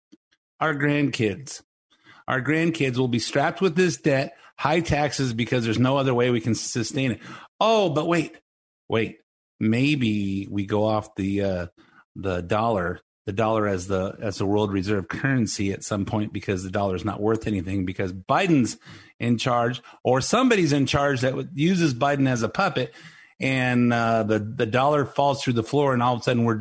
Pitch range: 105-140 Hz